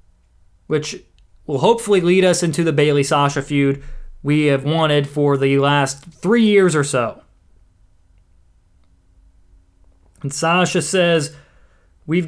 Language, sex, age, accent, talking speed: English, male, 20-39, American, 115 wpm